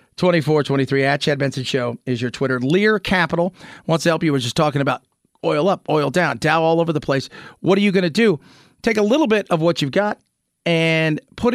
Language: English